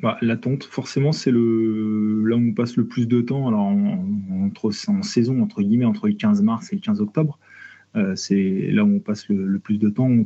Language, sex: French, male